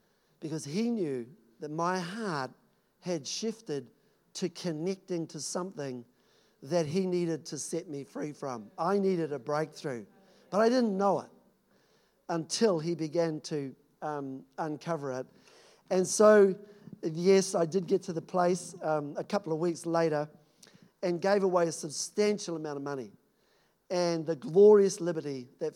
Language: English